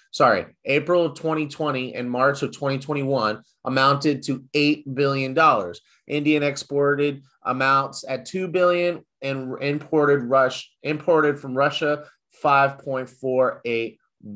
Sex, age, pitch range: male, 30-49, 125-150 Hz